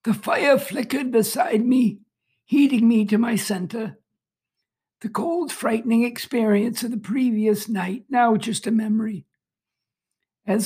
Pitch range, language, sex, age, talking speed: 205-245 Hz, English, male, 60-79, 130 wpm